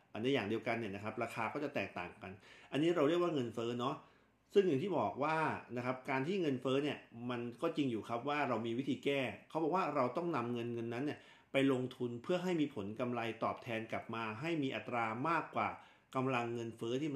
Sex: male